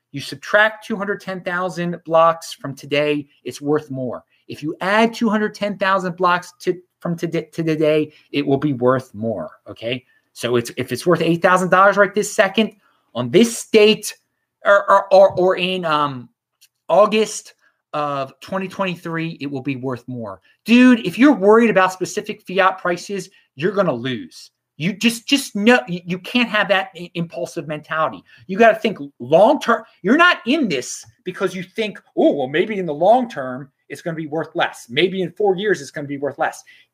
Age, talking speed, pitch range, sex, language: 30-49, 175 wpm, 145-205 Hz, male, English